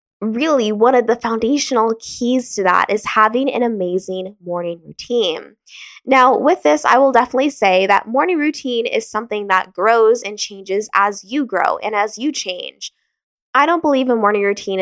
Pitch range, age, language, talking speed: 195-280 Hz, 10-29, English, 175 wpm